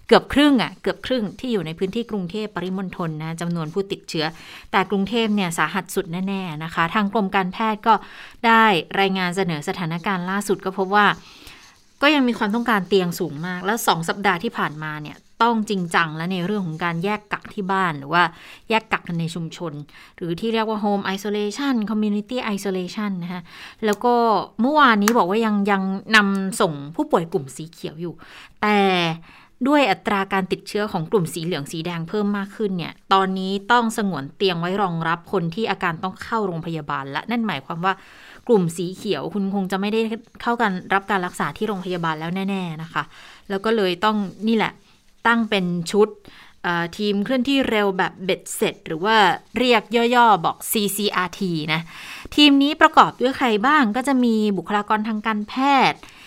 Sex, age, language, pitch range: female, 20-39, Thai, 175-220 Hz